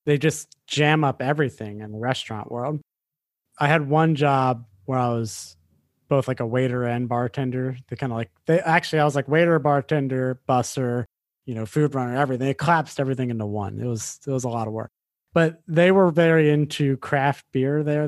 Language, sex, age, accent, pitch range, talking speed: English, male, 30-49, American, 120-150 Hz, 200 wpm